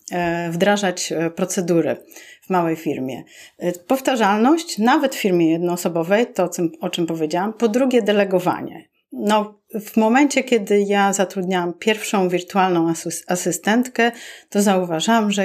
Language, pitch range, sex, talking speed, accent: Polish, 180-225 Hz, female, 115 wpm, native